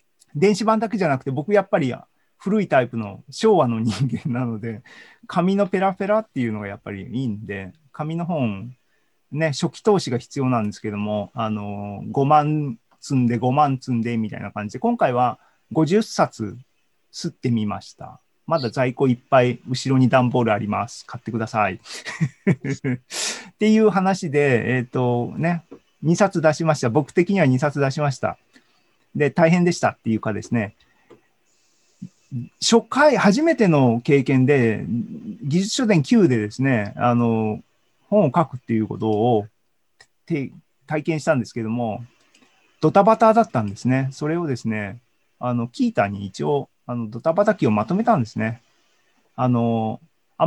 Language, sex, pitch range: Japanese, male, 115-170 Hz